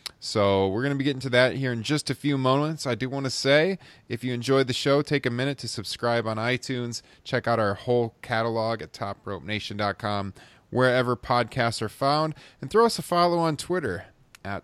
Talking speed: 205 wpm